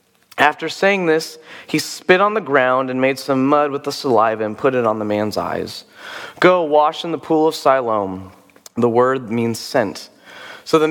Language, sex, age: English, male, 30-49